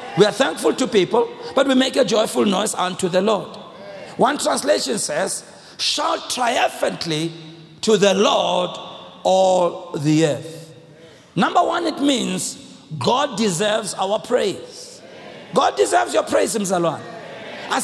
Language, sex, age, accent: English, male, 50-69, South African